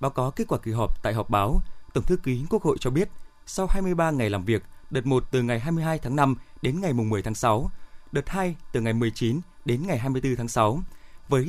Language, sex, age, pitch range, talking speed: Vietnamese, male, 20-39, 120-175 Hz, 230 wpm